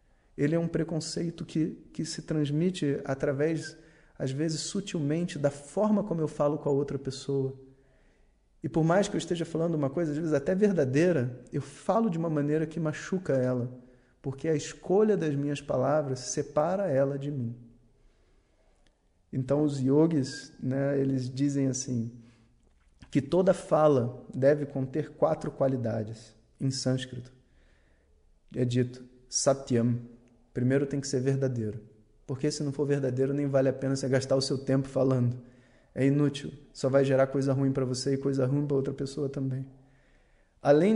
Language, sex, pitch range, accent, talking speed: Portuguese, male, 125-150 Hz, Brazilian, 160 wpm